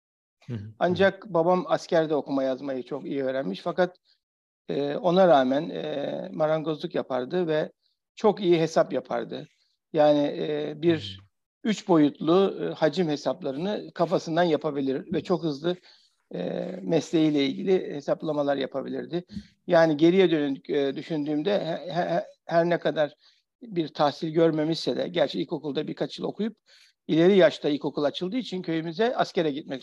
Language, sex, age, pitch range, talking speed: Turkish, male, 60-79, 140-180 Hz, 115 wpm